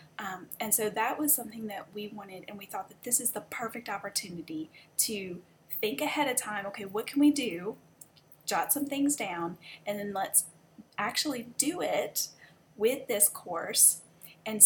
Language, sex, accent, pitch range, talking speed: English, female, American, 195-250 Hz, 170 wpm